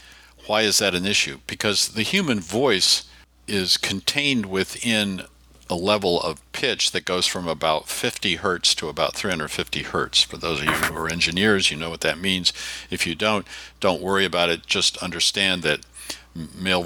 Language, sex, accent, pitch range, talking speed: English, male, American, 80-100 Hz, 175 wpm